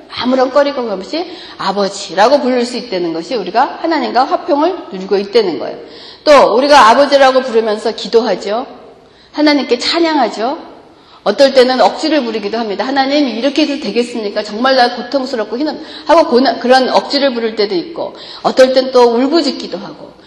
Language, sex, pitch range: Korean, female, 215-305 Hz